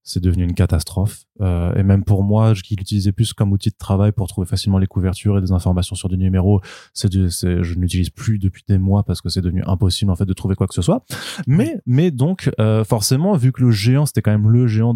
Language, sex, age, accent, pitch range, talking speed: French, male, 20-39, French, 95-110 Hz, 260 wpm